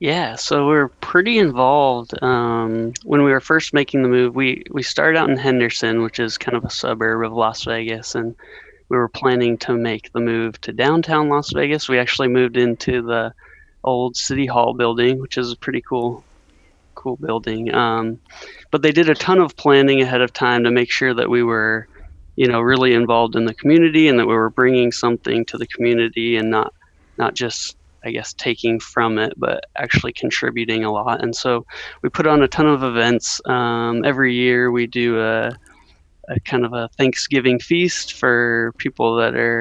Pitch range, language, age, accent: 115-130 Hz, English, 20-39, American